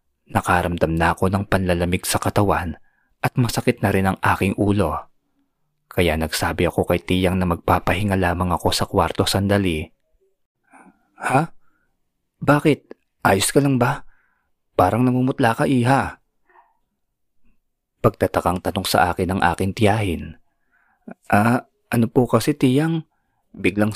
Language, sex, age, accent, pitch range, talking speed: Filipino, male, 20-39, native, 90-115 Hz, 125 wpm